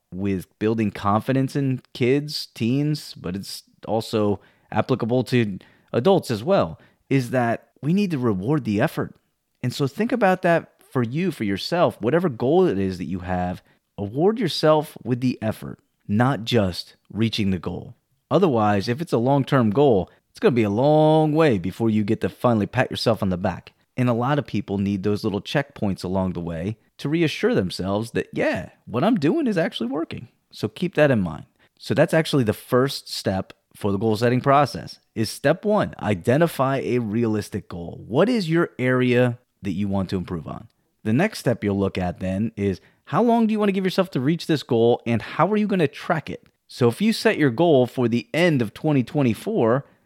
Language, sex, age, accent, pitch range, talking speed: English, male, 30-49, American, 100-145 Hz, 200 wpm